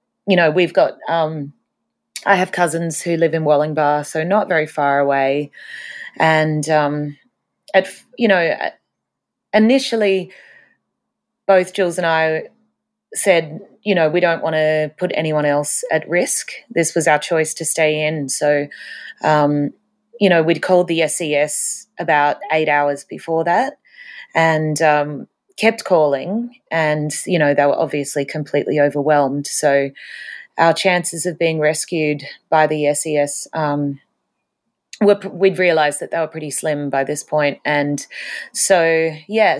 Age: 30-49